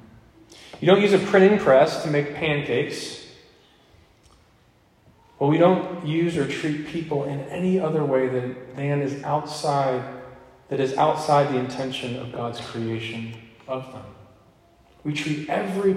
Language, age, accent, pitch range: English, 40-59, American, 115-155 Hz